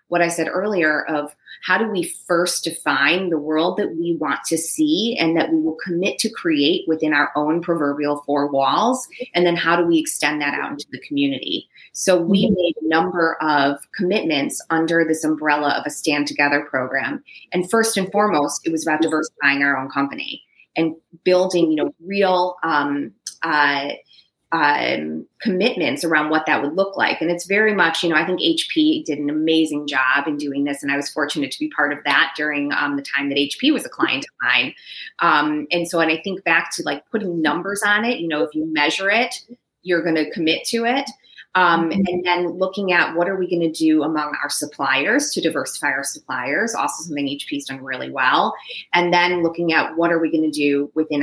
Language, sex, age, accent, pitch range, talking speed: English, female, 20-39, American, 145-175 Hz, 210 wpm